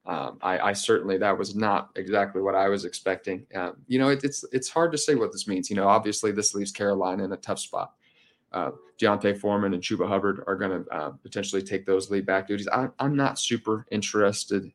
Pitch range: 95-115 Hz